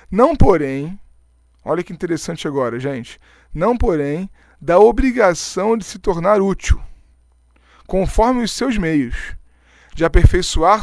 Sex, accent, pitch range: male, Brazilian, 145-205 Hz